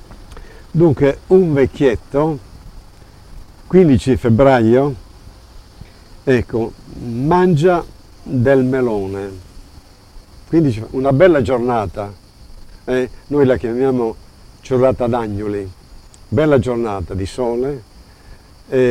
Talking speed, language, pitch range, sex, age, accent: 75 wpm, Italian, 100-135 Hz, male, 60-79, native